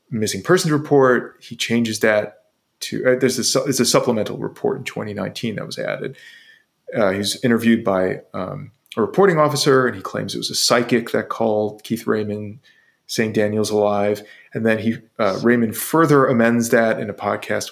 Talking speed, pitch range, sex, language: 180 wpm, 110-130 Hz, male, English